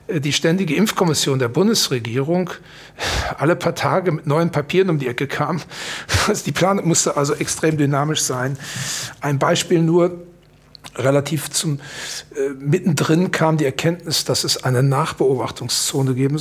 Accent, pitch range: German, 135-165 Hz